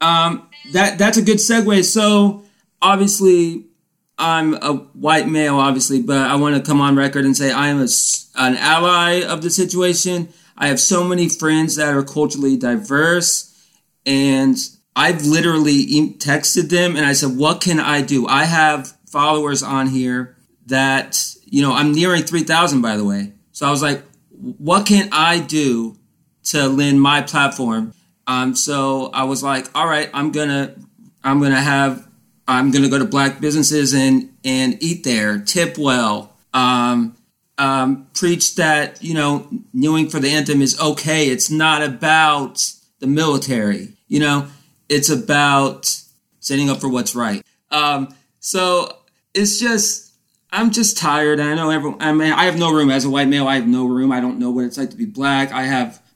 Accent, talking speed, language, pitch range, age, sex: American, 170 wpm, English, 135-170 Hz, 30-49, male